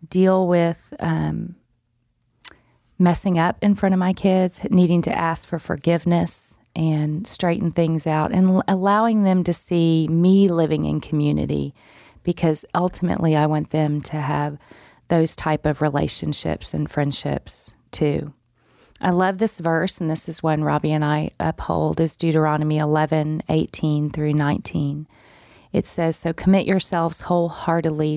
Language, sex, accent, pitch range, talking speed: English, female, American, 150-180 Hz, 140 wpm